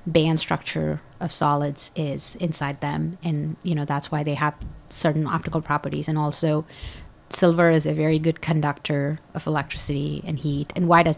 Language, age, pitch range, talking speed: English, 30-49, 150-170 Hz, 170 wpm